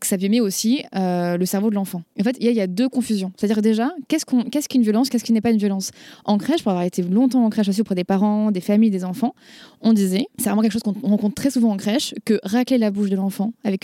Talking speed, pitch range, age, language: 280 wpm, 195-245 Hz, 20-39, French